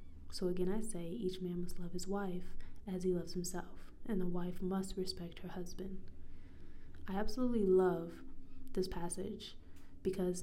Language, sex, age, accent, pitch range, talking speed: English, female, 20-39, American, 165-190 Hz, 155 wpm